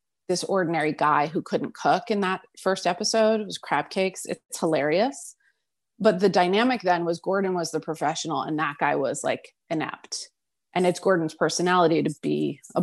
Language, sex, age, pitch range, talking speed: English, female, 30-49, 175-210 Hz, 180 wpm